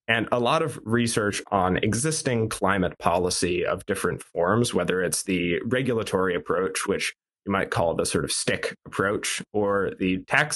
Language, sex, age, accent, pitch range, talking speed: English, male, 20-39, American, 95-120 Hz, 165 wpm